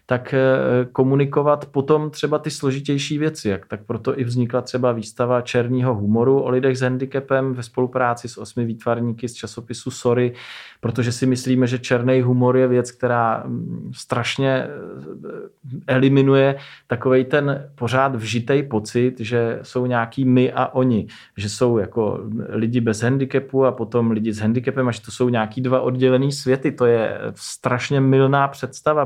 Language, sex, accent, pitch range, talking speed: Czech, male, native, 120-130 Hz, 150 wpm